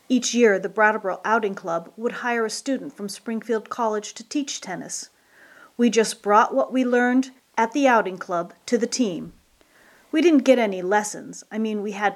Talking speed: 190 wpm